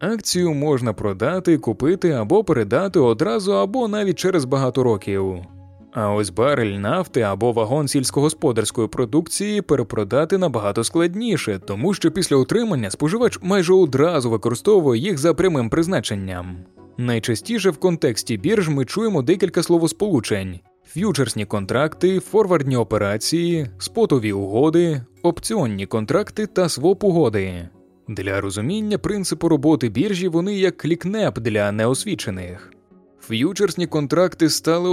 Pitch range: 110-185 Hz